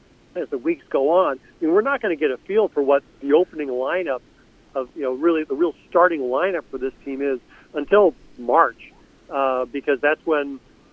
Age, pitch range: 50-69, 135-170 Hz